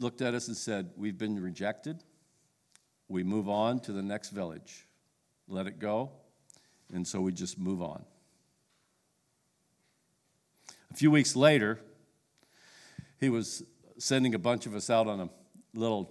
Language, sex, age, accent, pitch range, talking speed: English, male, 50-69, American, 95-120 Hz, 145 wpm